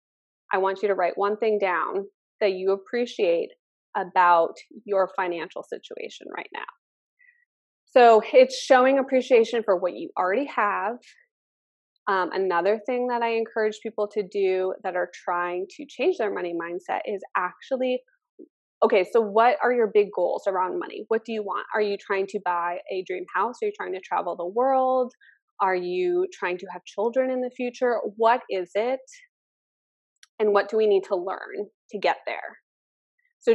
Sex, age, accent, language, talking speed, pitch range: female, 20-39, American, English, 170 wpm, 195-320 Hz